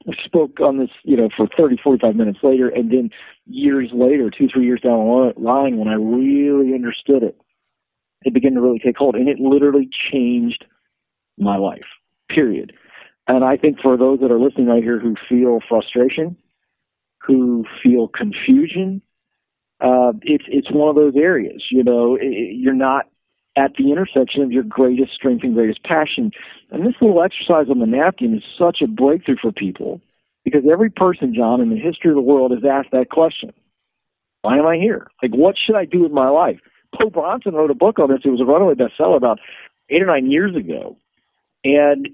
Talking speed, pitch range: 195 wpm, 125-170 Hz